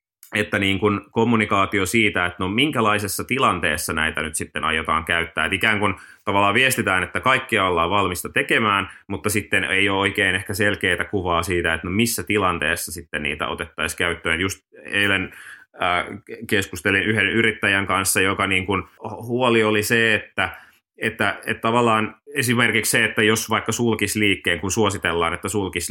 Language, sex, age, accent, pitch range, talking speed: Finnish, male, 30-49, native, 90-110 Hz, 160 wpm